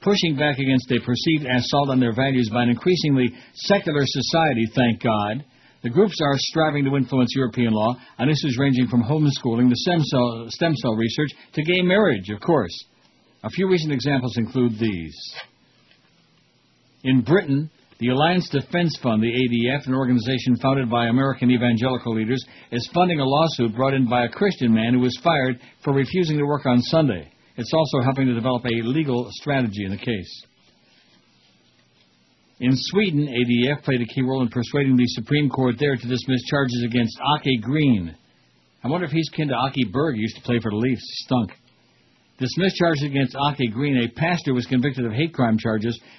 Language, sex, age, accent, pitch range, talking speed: English, male, 60-79, American, 120-145 Hz, 180 wpm